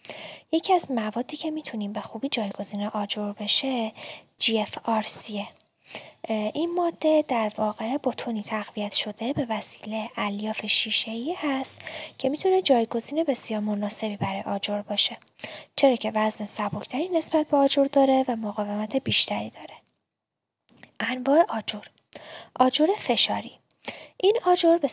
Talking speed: 120 wpm